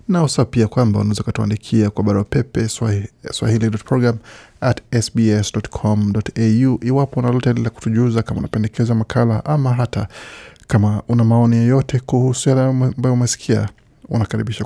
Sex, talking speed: male, 110 wpm